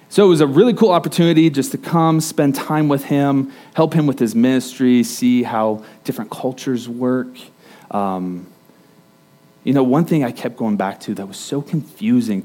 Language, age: English, 30-49